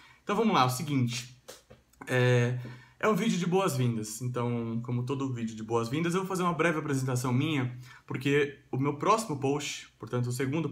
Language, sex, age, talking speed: Portuguese, male, 20-39, 180 wpm